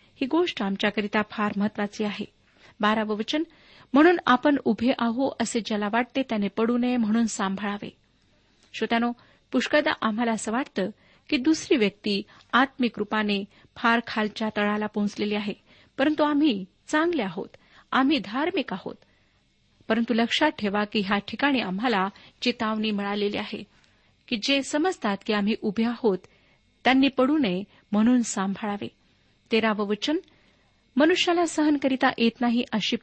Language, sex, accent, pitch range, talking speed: Marathi, female, native, 210-260 Hz, 125 wpm